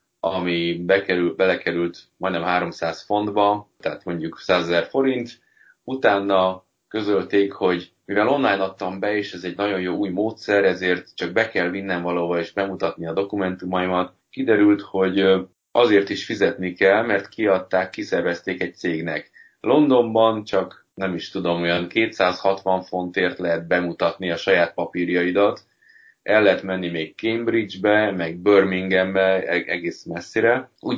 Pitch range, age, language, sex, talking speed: 90-100 Hz, 30-49, Hungarian, male, 130 wpm